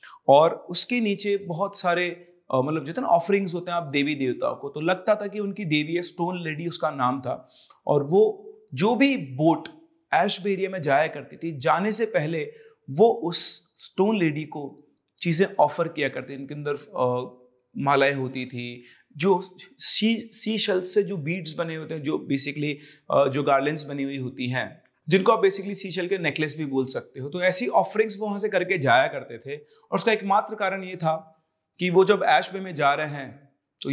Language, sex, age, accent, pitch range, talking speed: Hindi, male, 30-49, native, 145-195 Hz, 190 wpm